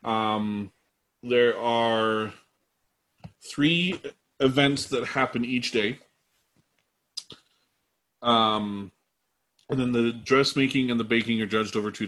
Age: 30-49